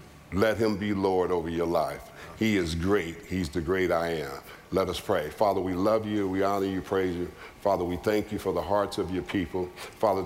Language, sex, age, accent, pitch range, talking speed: English, male, 50-69, American, 90-105 Hz, 220 wpm